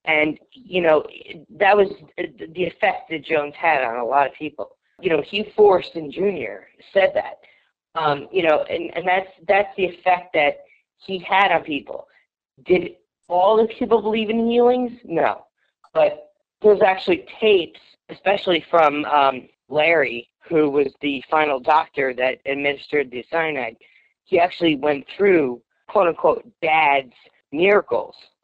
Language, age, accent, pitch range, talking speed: English, 40-59, American, 140-200 Hz, 145 wpm